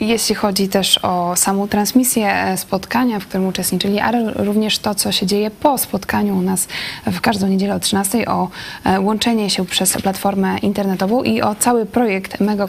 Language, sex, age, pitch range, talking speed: Polish, female, 20-39, 195-225 Hz, 170 wpm